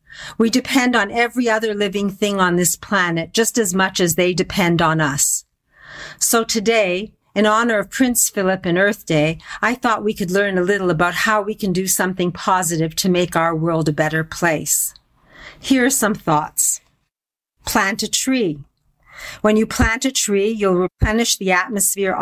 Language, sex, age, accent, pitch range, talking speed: English, female, 50-69, American, 180-225 Hz, 175 wpm